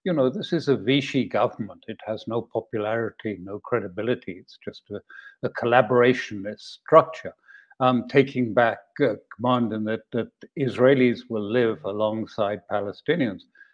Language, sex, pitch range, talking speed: English, male, 115-140 Hz, 140 wpm